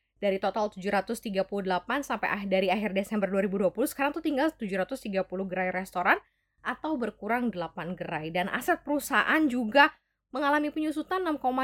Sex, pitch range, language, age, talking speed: female, 200-275 Hz, Indonesian, 20-39, 125 wpm